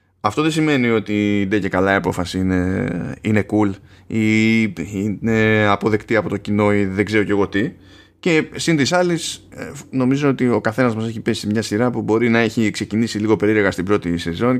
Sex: male